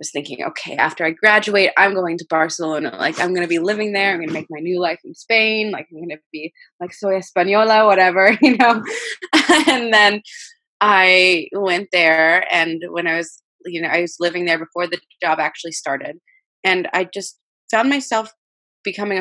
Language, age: English, 20-39